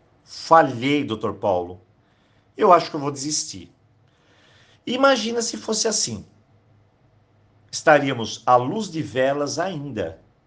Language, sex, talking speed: Portuguese, male, 110 wpm